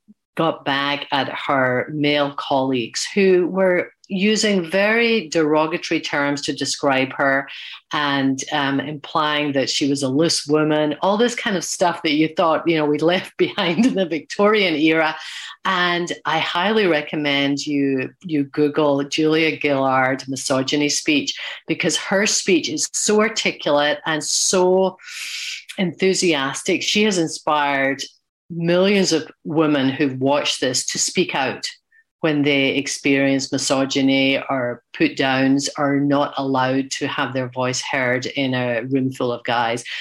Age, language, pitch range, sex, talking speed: 40-59, English, 135-170 Hz, female, 140 wpm